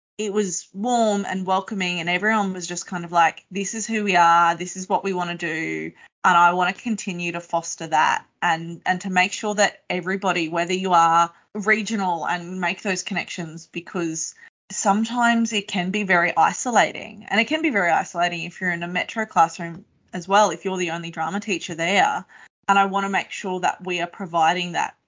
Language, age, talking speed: English, 20-39, 205 wpm